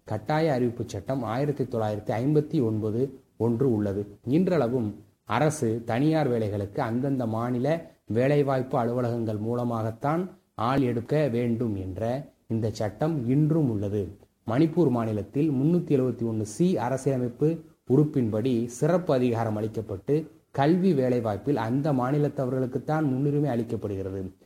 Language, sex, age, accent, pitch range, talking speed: Tamil, male, 30-49, native, 115-150 Hz, 105 wpm